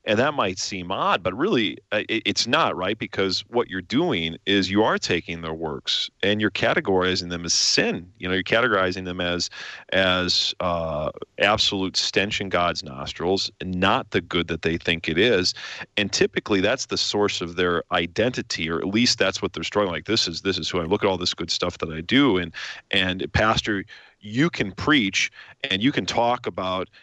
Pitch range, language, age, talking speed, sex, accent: 90-100 Hz, English, 40-59, 200 wpm, male, American